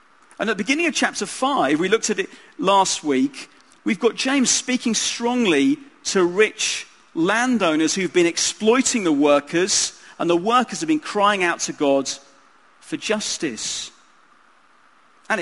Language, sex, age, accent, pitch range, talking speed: English, male, 40-59, British, 165-255 Hz, 150 wpm